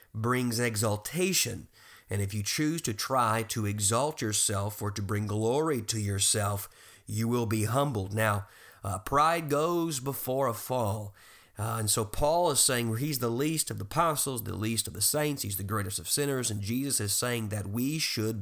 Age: 40-59